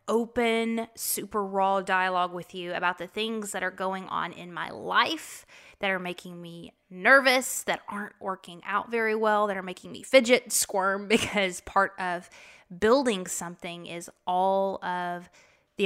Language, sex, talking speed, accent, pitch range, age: English, female, 160 wpm, American, 180-220 Hz, 20-39